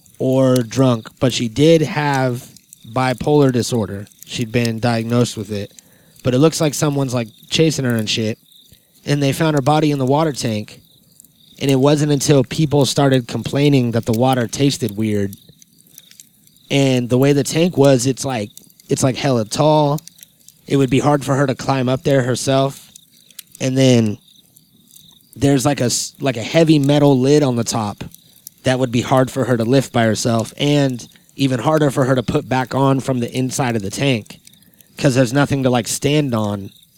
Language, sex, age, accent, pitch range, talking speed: English, male, 30-49, American, 115-145 Hz, 180 wpm